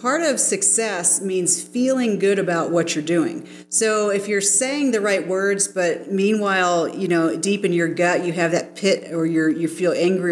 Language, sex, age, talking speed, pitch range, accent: English, female, 40-59, 200 wpm, 165-200 Hz, American